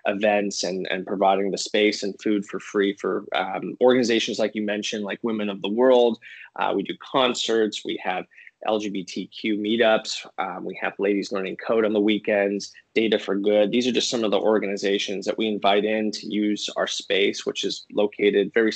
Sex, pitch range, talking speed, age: male, 100-110 Hz, 190 wpm, 20-39